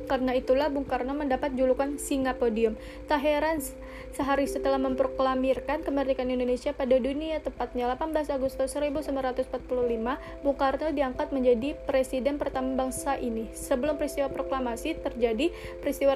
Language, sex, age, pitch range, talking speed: Indonesian, female, 20-39, 250-280 Hz, 125 wpm